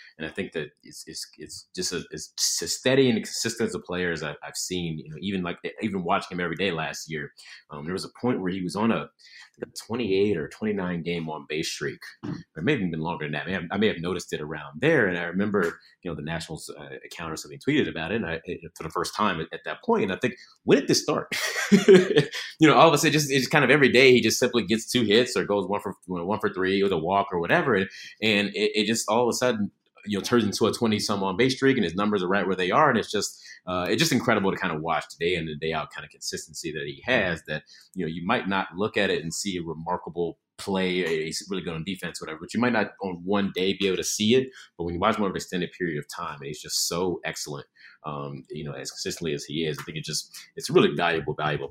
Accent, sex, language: American, male, English